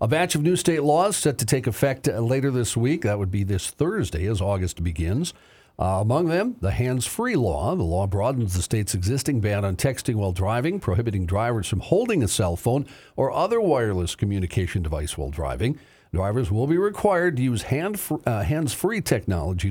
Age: 50-69